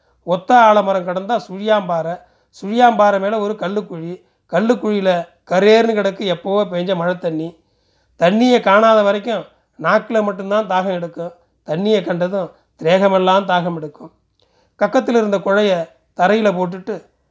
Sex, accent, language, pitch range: male, native, Tamil, 175-215 Hz